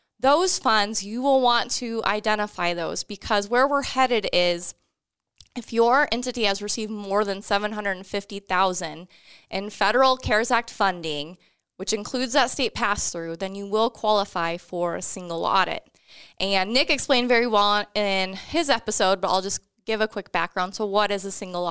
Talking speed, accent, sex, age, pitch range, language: 165 wpm, American, female, 20-39, 195-235 Hz, English